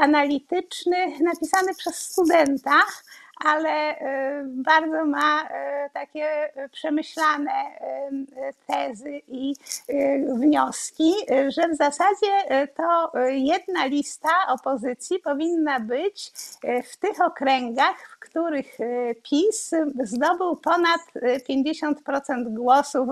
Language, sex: Polish, female